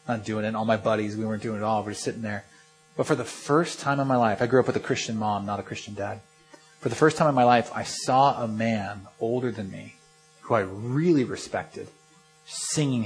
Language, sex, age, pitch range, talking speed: English, male, 30-49, 115-155 Hz, 250 wpm